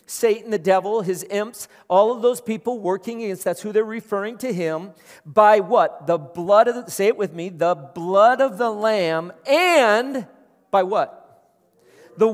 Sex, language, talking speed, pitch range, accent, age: male, English, 175 wpm, 215-270 Hz, American, 40-59